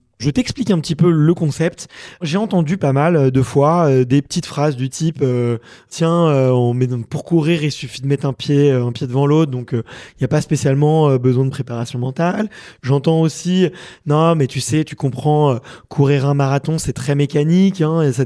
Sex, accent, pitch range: male, French, 135-165 Hz